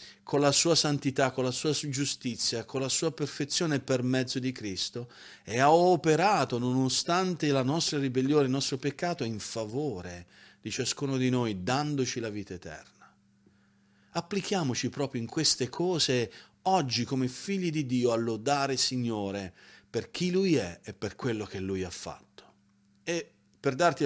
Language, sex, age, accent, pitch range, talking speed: Italian, male, 40-59, native, 110-150 Hz, 155 wpm